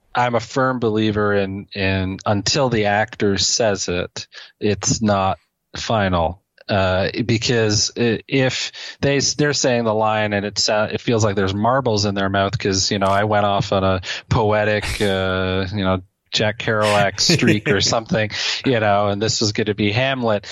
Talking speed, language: 175 wpm, English